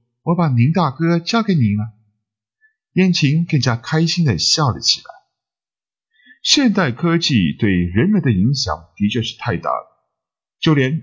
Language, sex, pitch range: Chinese, male, 100-165 Hz